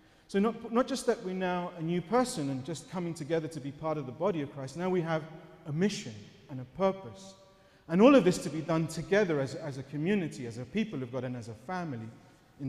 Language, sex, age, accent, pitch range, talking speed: English, male, 30-49, British, 145-180 Hz, 245 wpm